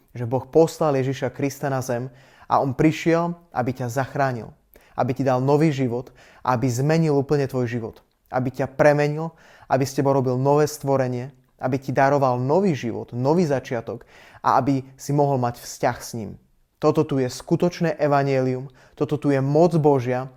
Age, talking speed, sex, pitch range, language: 20-39, 170 wpm, male, 130-150 Hz, Slovak